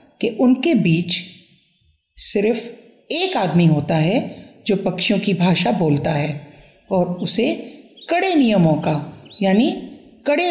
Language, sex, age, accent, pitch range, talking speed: Hindi, female, 50-69, native, 170-235 Hz, 120 wpm